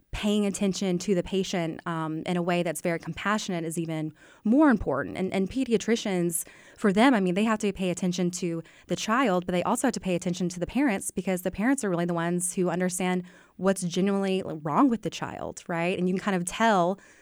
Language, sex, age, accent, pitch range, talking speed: English, female, 20-39, American, 175-200 Hz, 220 wpm